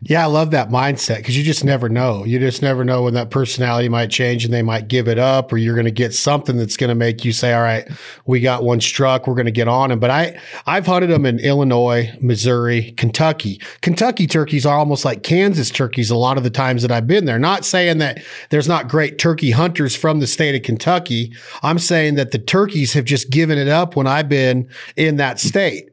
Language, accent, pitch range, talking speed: English, American, 130-170 Hz, 240 wpm